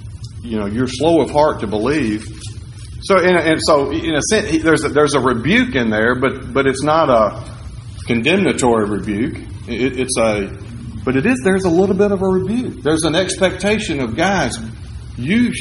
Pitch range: 110-145 Hz